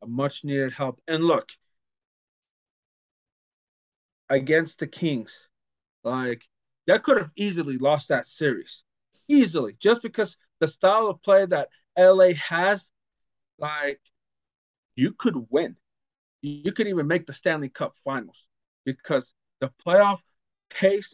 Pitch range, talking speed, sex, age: 135-185 Hz, 120 wpm, male, 40-59